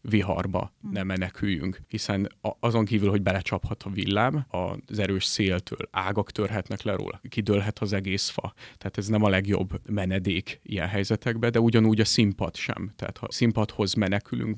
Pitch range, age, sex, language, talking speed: 95-110 Hz, 30-49, male, Hungarian, 155 wpm